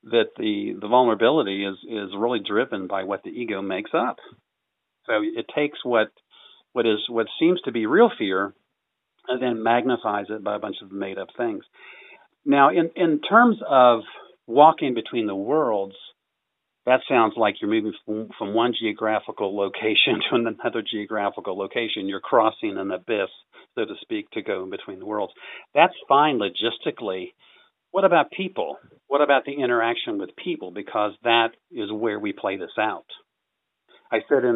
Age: 50-69